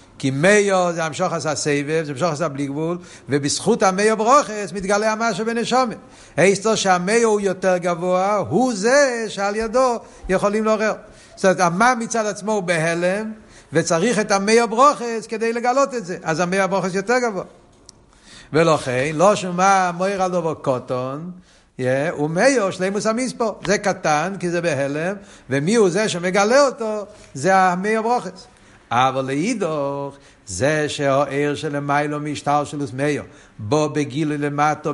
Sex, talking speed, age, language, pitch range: male, 145 wpm, 60-79, Hebrew, 150-220 Hz